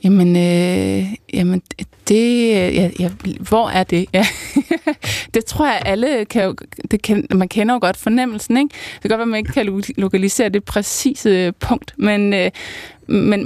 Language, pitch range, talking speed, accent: Danish, 190-230 Hz, 175 wpm, native